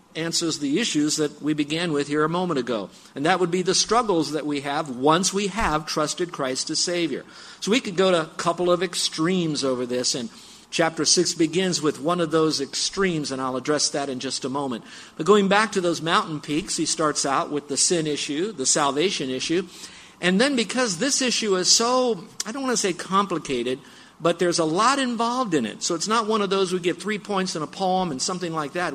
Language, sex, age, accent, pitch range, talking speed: English, male, 50-69, American, 145-190 Hz, 225 wpm